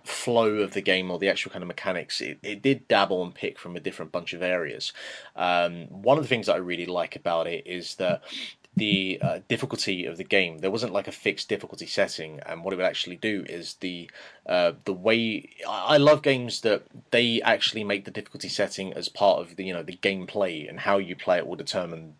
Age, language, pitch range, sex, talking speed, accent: 20-39, English, 85-105 Hz, male, 225 wpm, British